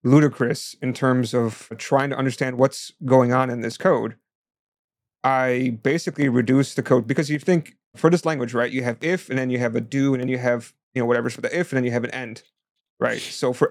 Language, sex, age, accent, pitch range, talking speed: English, male, 30-49, American, 120-145 Hz, 230 wpm